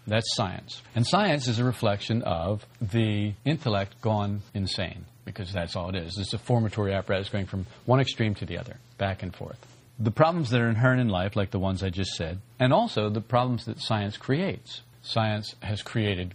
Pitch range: 100-125 Hz